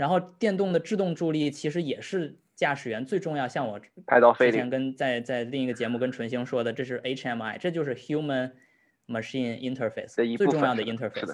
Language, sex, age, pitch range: Chinese, male, 20-39, 120-160 Hz